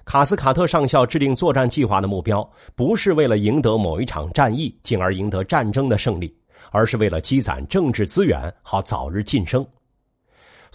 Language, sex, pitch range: Chinese, male, 100-140 Hz